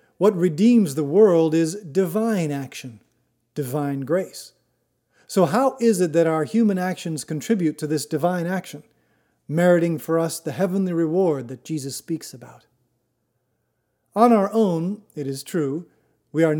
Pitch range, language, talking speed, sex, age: 145-185 Hz, English, 145 wpm, male, 40-59